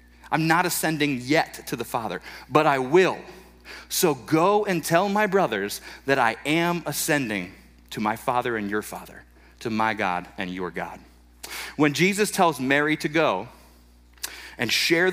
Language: English